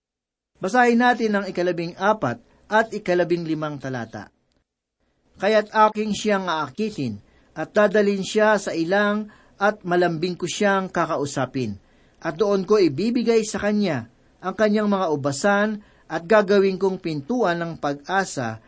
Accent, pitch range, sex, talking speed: native, 155-205 Hz, male, 125 wpm